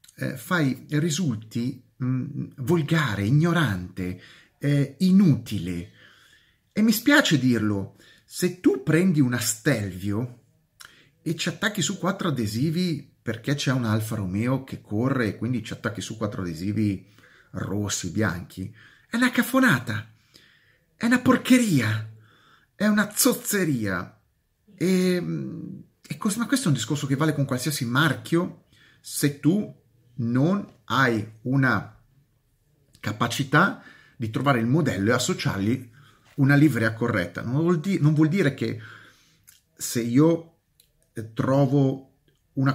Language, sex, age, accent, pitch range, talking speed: Italian, male, 30-49, native, 110-155 Hz, 120 wpm